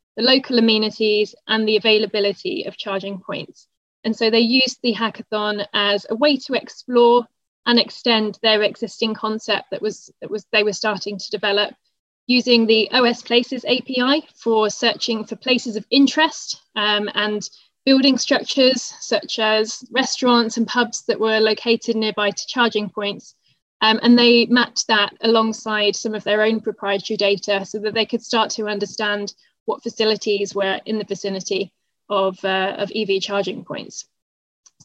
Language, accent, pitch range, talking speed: English, British, 210-235 Hz, 160 wpm